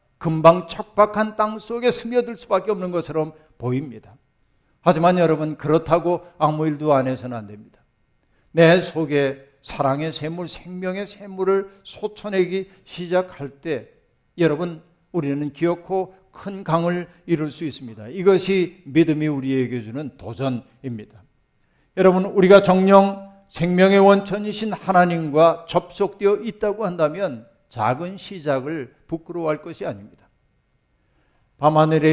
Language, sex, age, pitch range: Korean, male, 60-79, 145-190 Hz